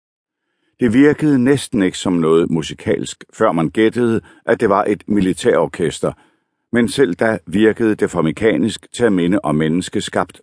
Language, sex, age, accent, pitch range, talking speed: Danish, male, 60-79, native, 85-110 Hz, 155 wpm